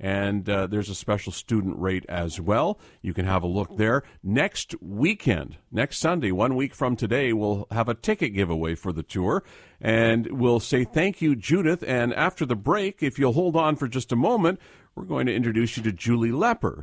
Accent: American